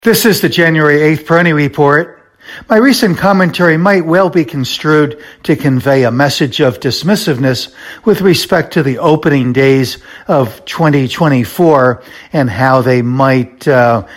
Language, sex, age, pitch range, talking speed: English, male, 60-79, 130-160 Hz, 140 wpm